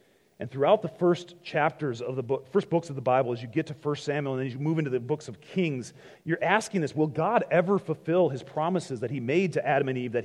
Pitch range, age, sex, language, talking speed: 105-160 Hz, 40-59, male, English, 265 wpm